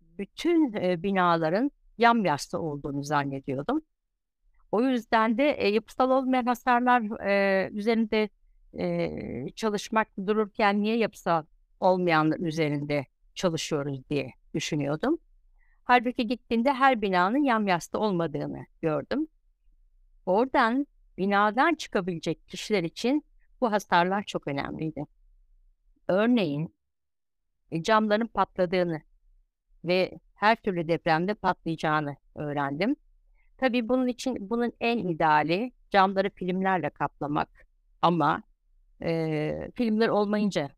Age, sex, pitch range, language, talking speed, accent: 60-79, female, 155-225 Hz, Turkish, 90 wpm, native